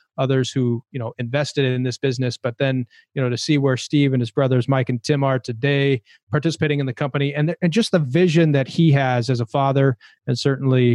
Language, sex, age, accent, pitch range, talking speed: English, male, 30-49, American, 125-150 Hz, 225 wpm